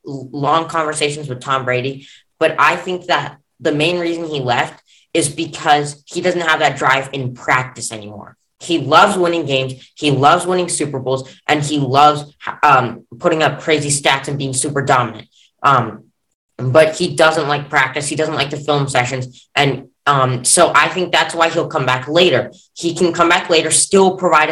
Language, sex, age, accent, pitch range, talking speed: English, female, 10-29, American, 135-165 Hz, 185 wpm